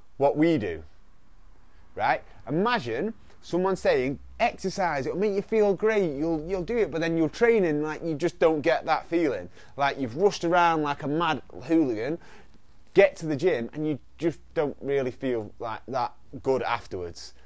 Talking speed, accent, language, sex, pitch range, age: 170 wpm, British, English, male, 135-175 Hz, 30-49